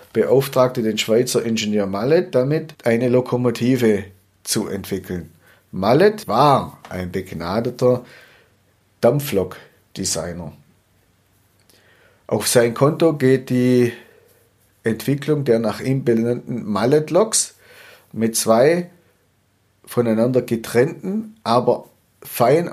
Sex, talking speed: male, 85 wpm